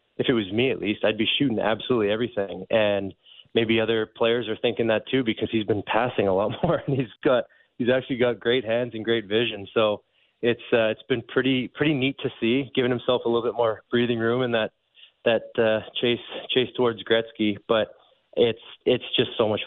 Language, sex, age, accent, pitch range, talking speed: English, male, 20-39, American, 105-120 Hz, 210 wpm